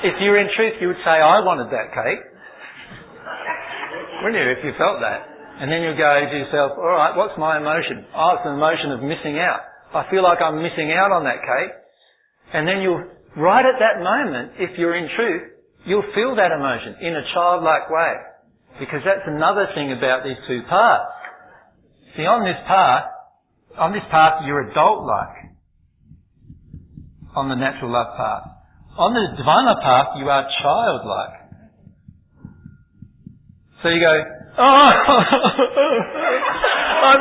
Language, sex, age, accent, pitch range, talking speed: English, male, 50-69, Australian, 145-205 Hz, 155 wpm